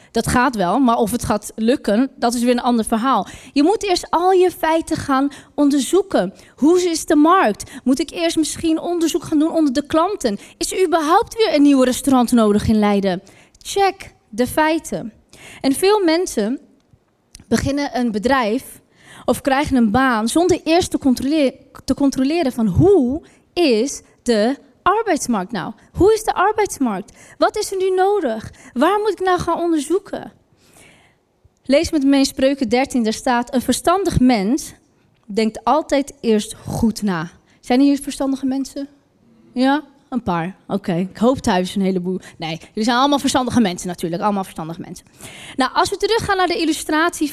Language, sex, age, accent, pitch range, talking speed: Dutch, female, 20-39, Dutch, 235-330 Hz, 170 wpm